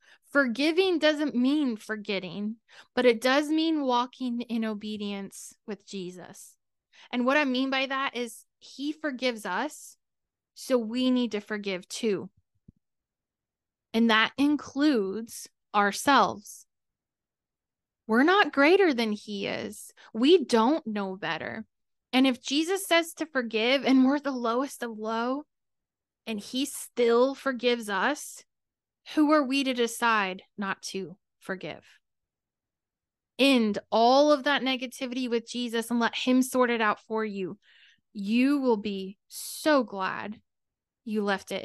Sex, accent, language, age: female, American, English, 10-29